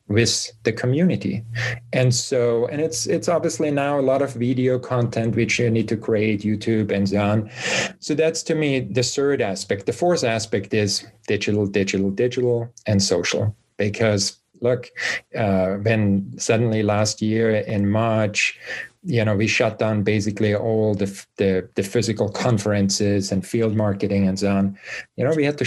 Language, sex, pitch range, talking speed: English, male, 105-130 Hz, 170 wpm